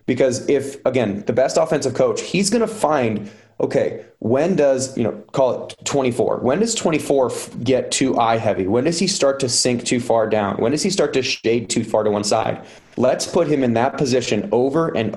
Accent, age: American, 20-39